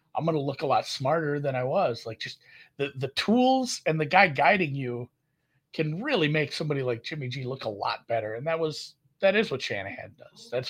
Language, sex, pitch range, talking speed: English, male, 115-160 Hz, 225 wpm